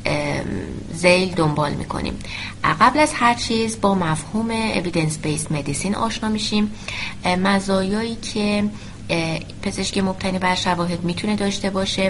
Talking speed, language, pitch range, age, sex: 120 wpm, Persian, 165-220 Hz, 30-49, female